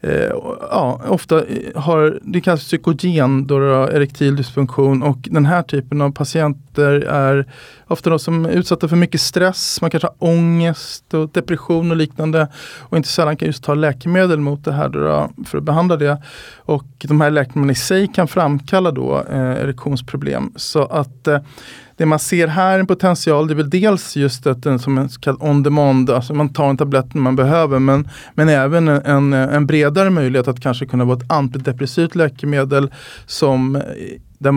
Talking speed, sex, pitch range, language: 180 wpm, male, 140-170 Hz, Swedish